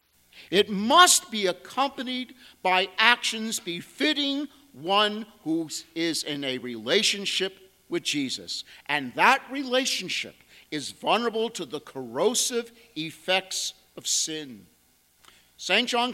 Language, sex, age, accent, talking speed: English, male, 50-69, American, 105 wpm